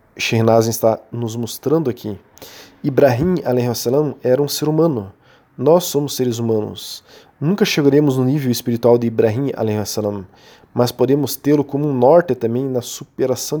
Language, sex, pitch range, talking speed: Portuguese, male, 115-145 Hz, 130 wpm